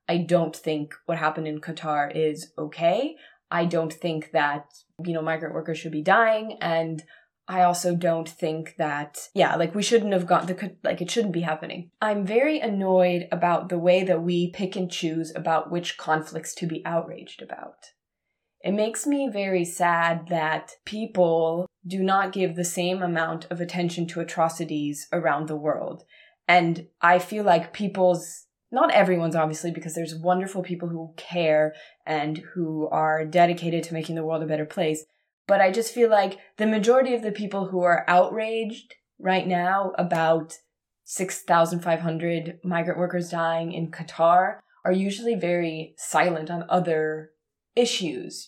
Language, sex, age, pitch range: English, female, 20-39, 160-185 Hz